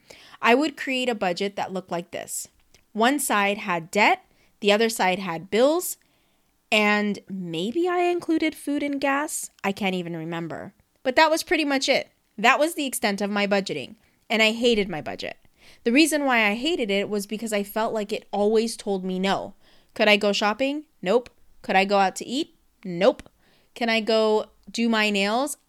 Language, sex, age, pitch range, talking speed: English, female, 20-39, 200-260 Hz, 190 wpm